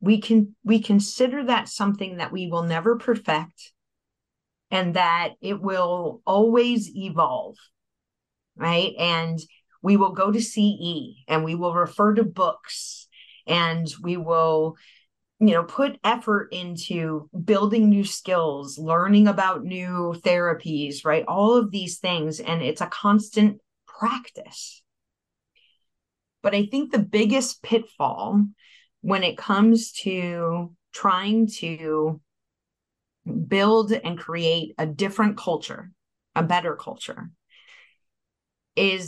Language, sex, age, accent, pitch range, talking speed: English, female, 30-49, American, 170-215 Hz, 120 wpm